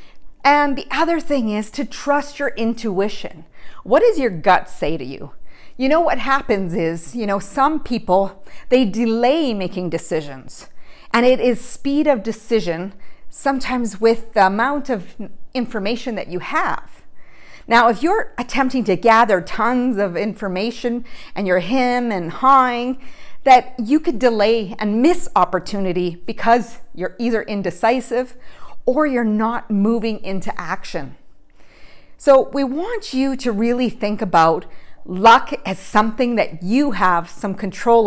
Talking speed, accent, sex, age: 145 wpm, American, female, 40-59